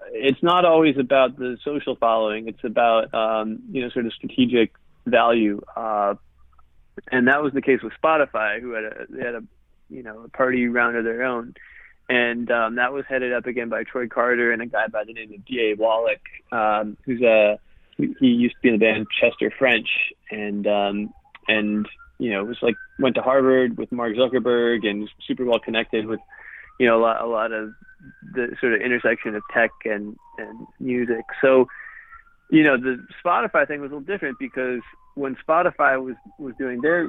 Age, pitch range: 20-39, 110-130 Hz